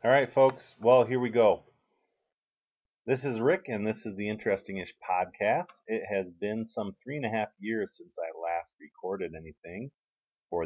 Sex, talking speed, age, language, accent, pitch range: male, 175 wpm, 30-49, English, American, 85-120 Hz